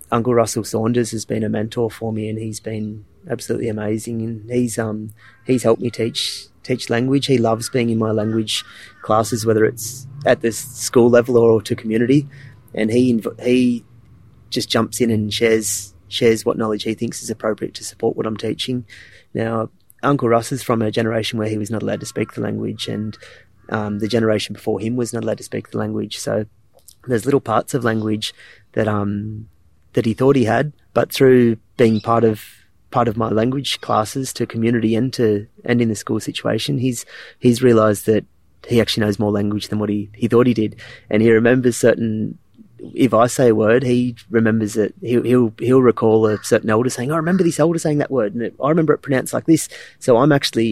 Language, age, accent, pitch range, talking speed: English, 30-49, Australian, 110-125 Hz, 205 wpm